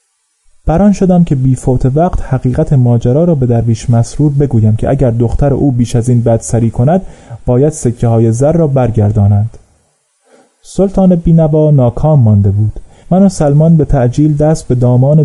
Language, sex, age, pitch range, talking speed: Persian, male, 30-49, 120-155 Hz, 160 wpm